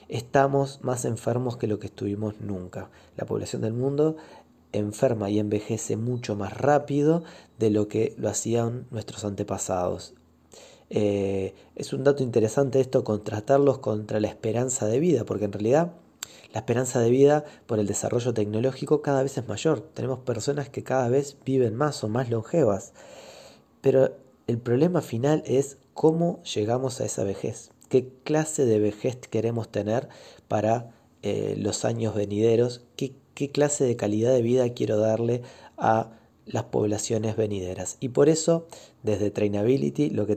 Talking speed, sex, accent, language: 150 wpm, male, Argentinian, Spanish